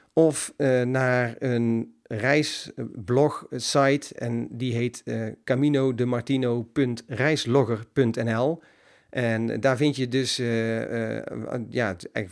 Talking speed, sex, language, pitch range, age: 85 wpm, male, Dutch, 115-150 Hz, 40-59